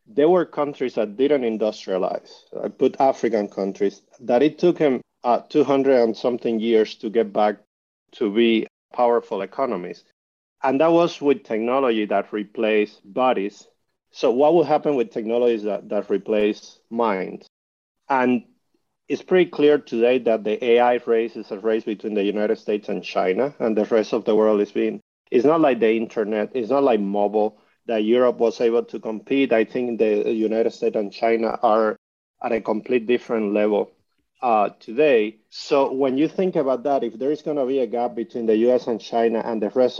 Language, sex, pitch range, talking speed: English, male, 105-125 Hz, 185 wpm